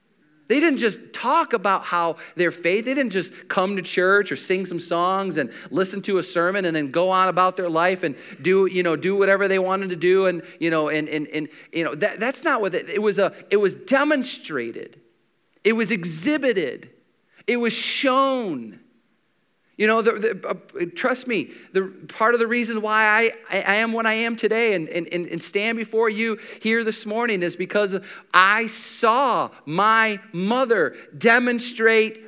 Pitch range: 185-235 Hz